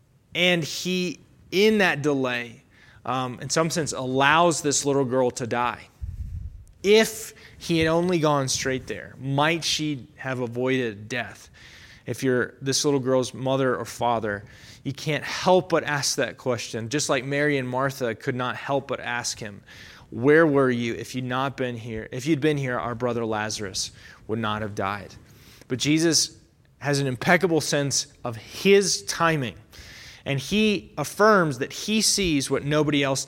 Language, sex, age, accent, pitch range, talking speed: English, male, 20-39, American, 120-150 Hz, 160 wpm